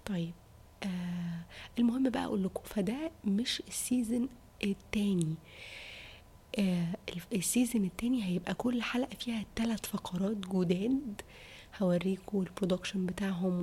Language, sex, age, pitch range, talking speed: Arabic, female, 20-39, 185-230 Hz, 100 wpm